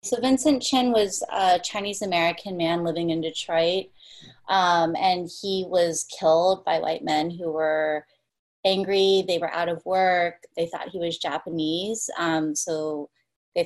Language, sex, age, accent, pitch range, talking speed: English, female, 20-39, American, 155-180 Hz, 150 wpm